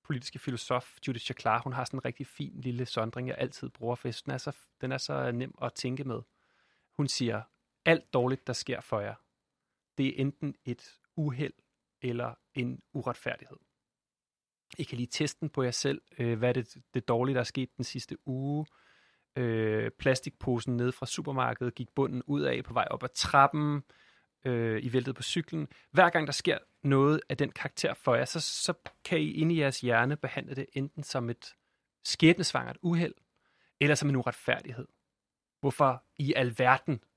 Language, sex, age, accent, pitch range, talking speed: Danish, male, 30-49, native, 125-145 Hz, 180 wpm